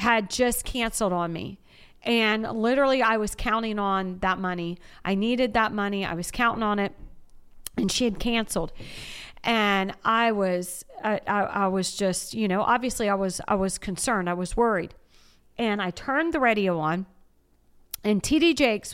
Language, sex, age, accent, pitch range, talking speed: English, female, 40-59, American, 185-230 Hz, 170 wpm